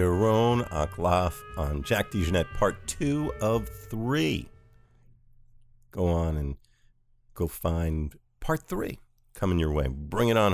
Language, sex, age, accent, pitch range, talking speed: English, male, 50-69, American, 85-120 Hz, 125 wpm